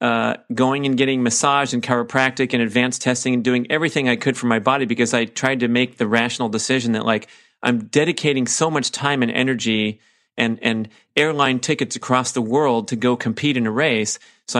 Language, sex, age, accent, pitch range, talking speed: English, male, 40-59, American, 115-130 Hz, 200 wpm